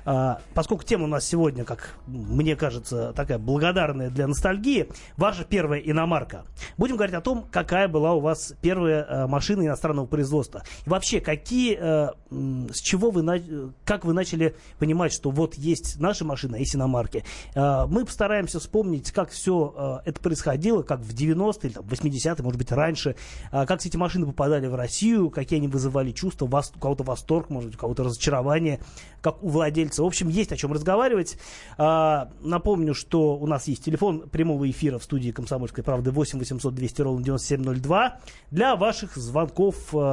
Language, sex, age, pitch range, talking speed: Russian, male, 30-49, 135-170 Hz, 155 wpm